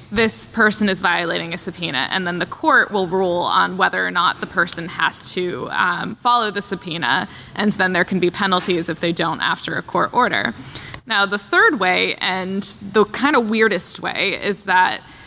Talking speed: 195 wpm